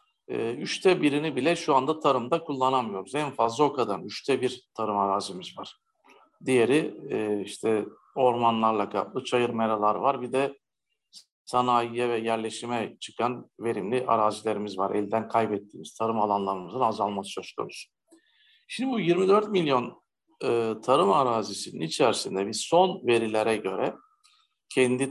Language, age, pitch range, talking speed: Turkish, 50-69, 115-170 Hz, 130 wpm